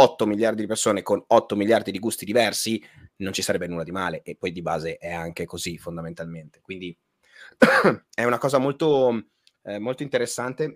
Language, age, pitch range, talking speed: Italian, 30-49, 95-120 Hz, 180 wpm